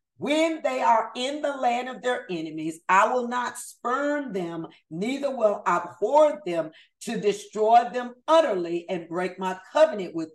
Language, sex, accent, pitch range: English, female, American, 180-255 Hz